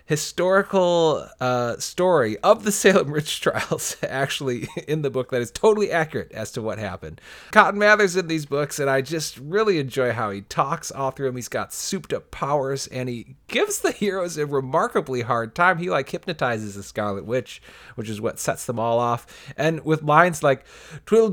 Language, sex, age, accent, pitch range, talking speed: English, male, 30-49, American, 120-170 Hz, 190 wpm